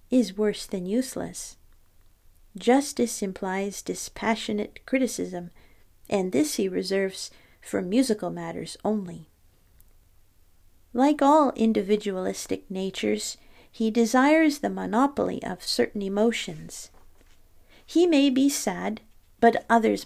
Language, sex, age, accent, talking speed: English, female, 50-69, American, 100 wpm